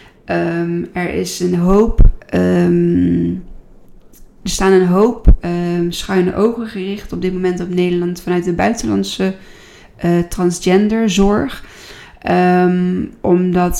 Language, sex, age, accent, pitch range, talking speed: Dutch, female, 20-39, Dutch, 170-185 Hz, 85 wpm